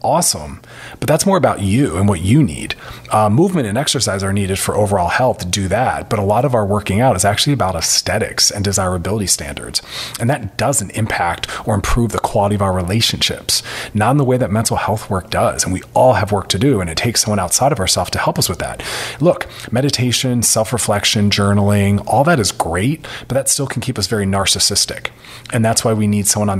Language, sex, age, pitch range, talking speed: English, male, 30-49, 100-125 Hz, 220 wpm